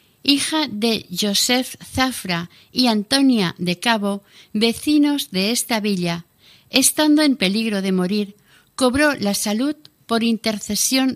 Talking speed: 120 wpm